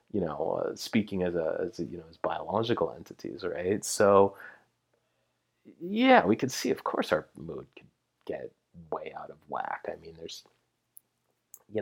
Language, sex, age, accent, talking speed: English, male, 30-49, American, 170 wpm